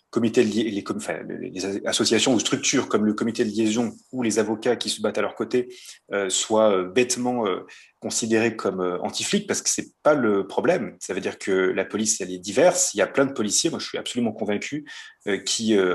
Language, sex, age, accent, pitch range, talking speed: French, male, 30-49, French, 105-140 Hz, 190 wpm